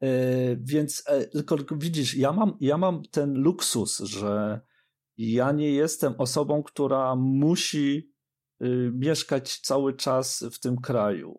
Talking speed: 110 wpm